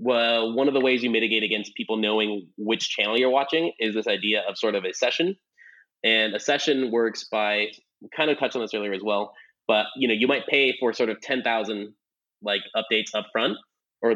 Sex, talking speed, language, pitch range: male, 210 wpm, English, 105-125 Hz